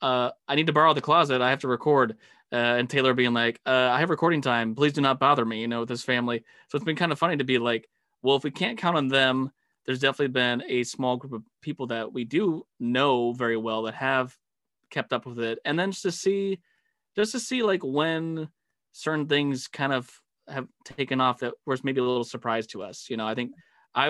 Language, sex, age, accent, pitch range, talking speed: English, male, 20-39, American, 120-145 Hz, 240 wpm